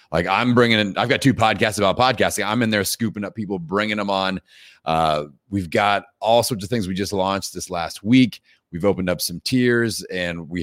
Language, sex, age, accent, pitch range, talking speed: English, male, 30-49, American, 85-105 Hz, 220 wpm